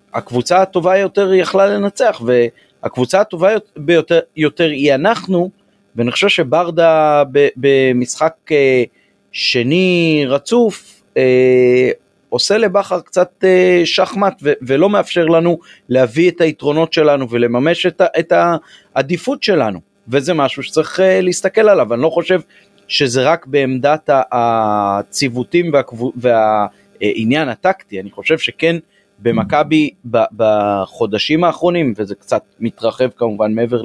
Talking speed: 105 wpm